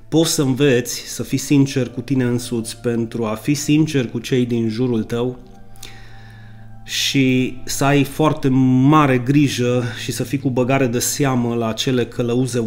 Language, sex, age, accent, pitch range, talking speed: Romanian, male, 30-49, native, 115-140 Hz, 160 wpm